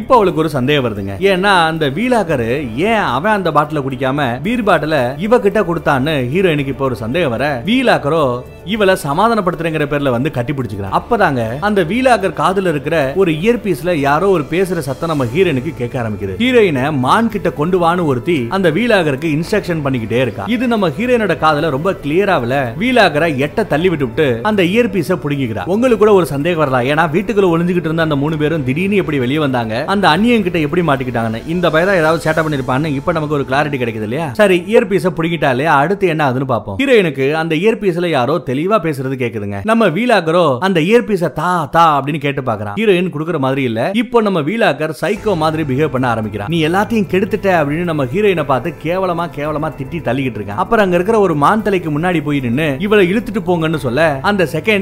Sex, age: male, 30-49